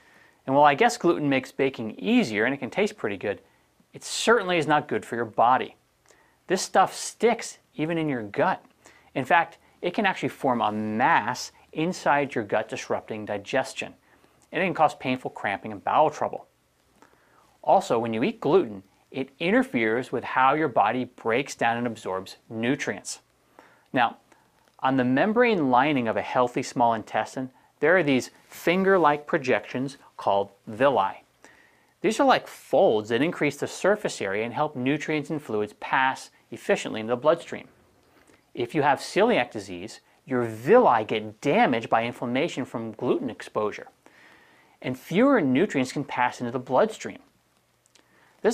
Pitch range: 115-155 Hz